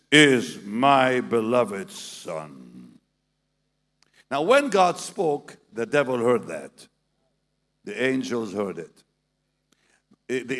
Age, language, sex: 60-79, English, male